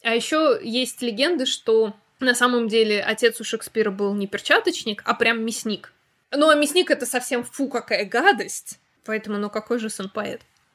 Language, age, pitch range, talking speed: Russian, 20-39, 220-300 Hz, 175 wpm